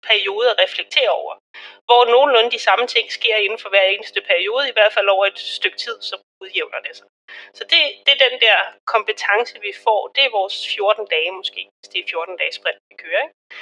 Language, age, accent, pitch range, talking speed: Danish, 30-49, native, 200-310 Hz, 220 wpm